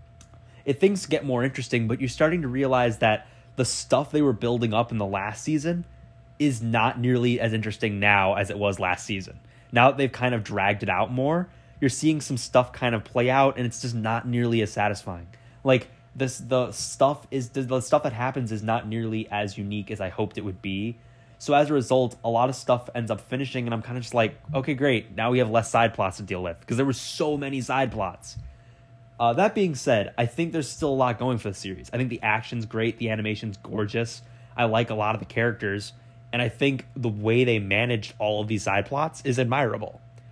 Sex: male